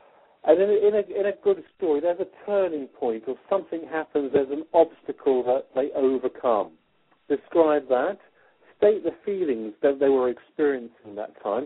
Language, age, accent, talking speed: English, 50-69, British, 170 wpm